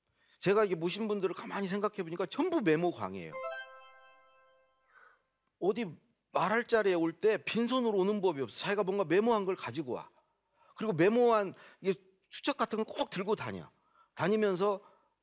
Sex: male